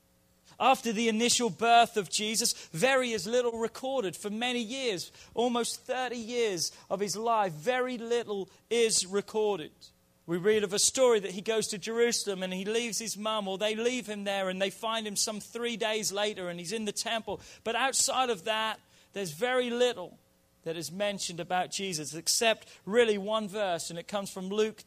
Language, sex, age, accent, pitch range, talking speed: English, male, 40-59, British, 180-230 Hz, 185 wpm